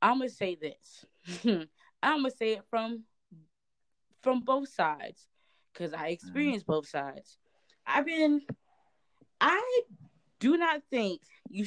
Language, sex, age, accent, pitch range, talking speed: English, female, 20-39, American, 160-230 Hz, 135 wpm